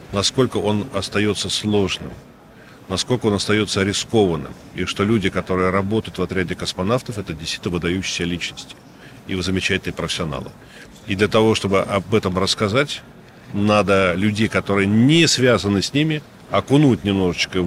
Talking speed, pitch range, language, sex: 130 wpm, 90-110 Hz, Russian, male